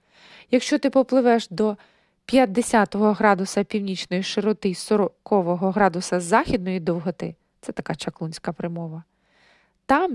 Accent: native